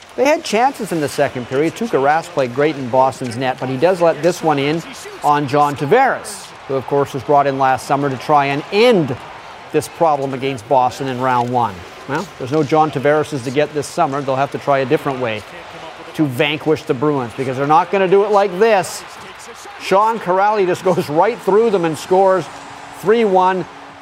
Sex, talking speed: male, 205 wpm